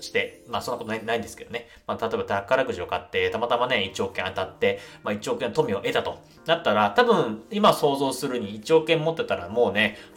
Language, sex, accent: Japanese, male, native